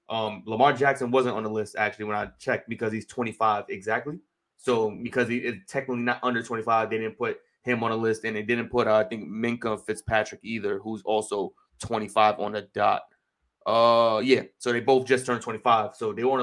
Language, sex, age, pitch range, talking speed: English, male, 20-39, 110-135 Hz, 210 wpm